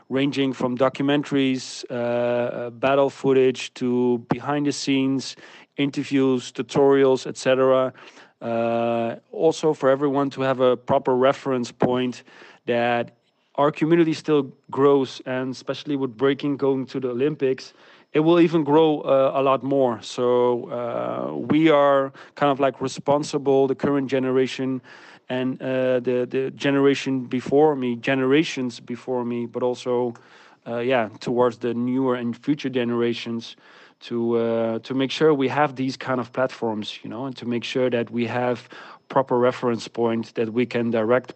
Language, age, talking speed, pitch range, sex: German, 40-59, 145 wpm, 120-135 Hz, male